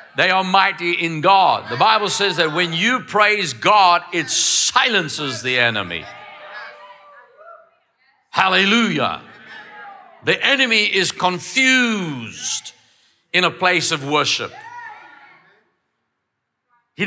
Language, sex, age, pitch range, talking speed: English, male, 60-79, 155-250 Hz, 100 wpm